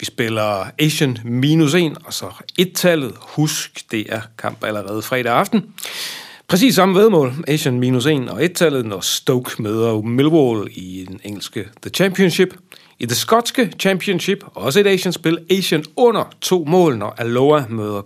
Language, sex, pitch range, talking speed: Danish, male, 115-180 Hz, 155 wpm